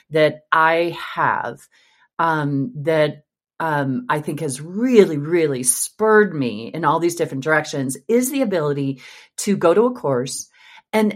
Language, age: English, 40-59